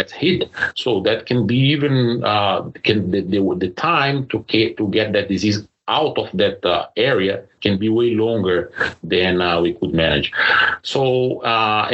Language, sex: English, male